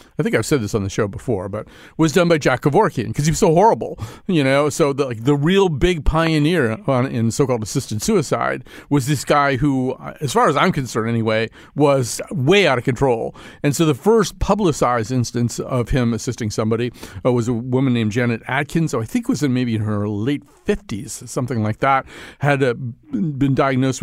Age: 40-59